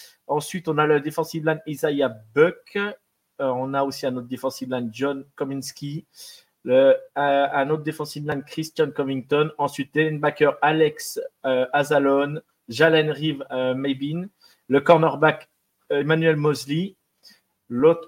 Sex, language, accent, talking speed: male, French, French, 125 wpm